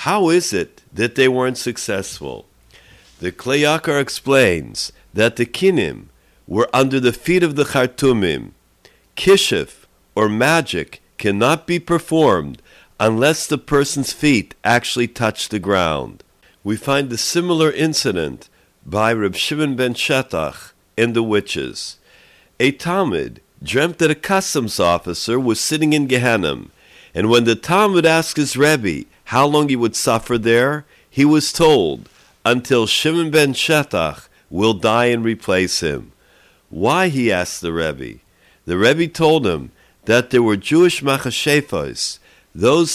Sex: male